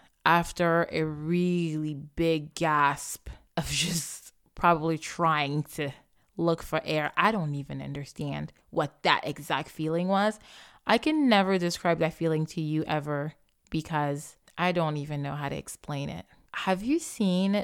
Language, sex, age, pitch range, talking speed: English, female, 20-39, 150-185 Hz, 145 wpm